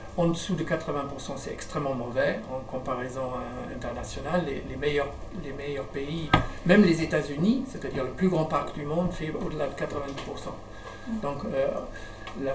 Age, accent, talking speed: 60-79, French, 165 wpm